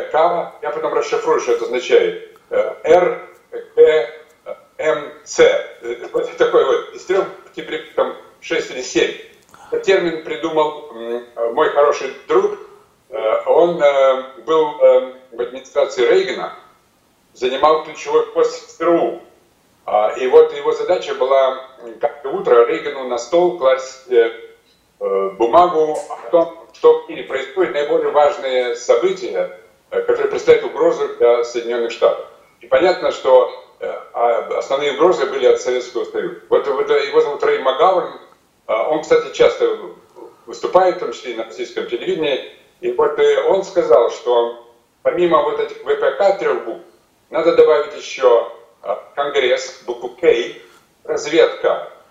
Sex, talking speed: male, 115 wpm